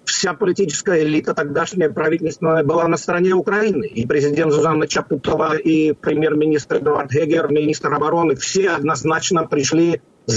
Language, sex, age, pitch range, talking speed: Russian, male, 50-69, 155-185 Hz, 135 wpm